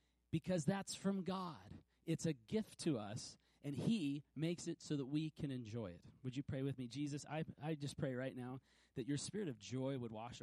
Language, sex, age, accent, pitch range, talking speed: English, male, 30-49, American, 120-170 Hz, 220 wpm